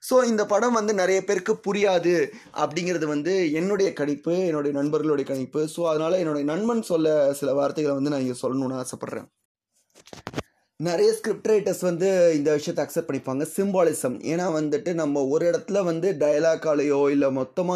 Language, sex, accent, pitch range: English, male, Indian, 145-180 Hz